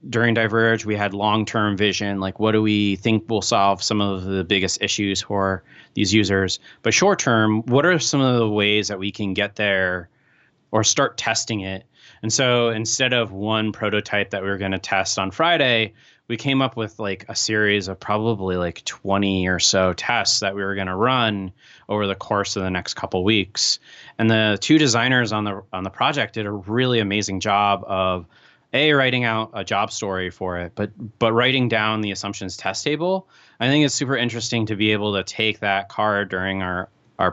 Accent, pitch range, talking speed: American, 95-115 Hz, 205 wpm